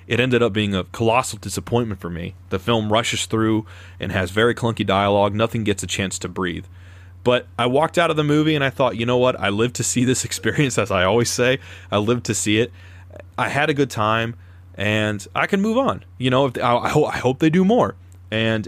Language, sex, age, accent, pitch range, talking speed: English, male, 30-49, American, 95-125 Hz, 225 wpm